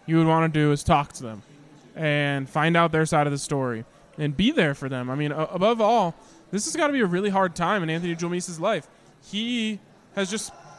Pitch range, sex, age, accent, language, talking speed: 155-200 Hz, male, 20-39, American, English, 235 wpm